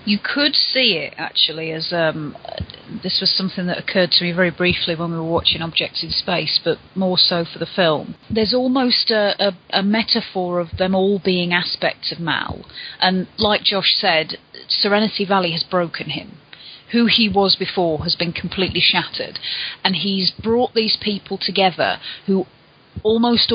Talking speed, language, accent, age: 170 wpm, English, British, 30-49